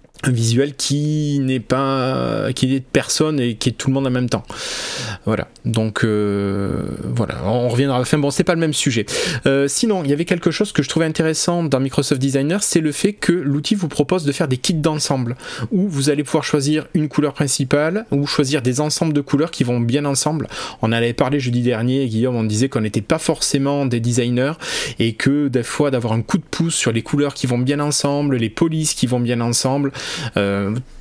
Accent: French